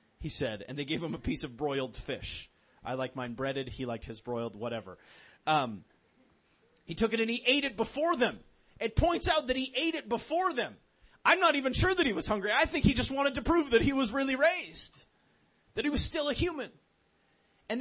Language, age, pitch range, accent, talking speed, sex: English, 30-49, 165-260 Hz, American, 220 wpm, male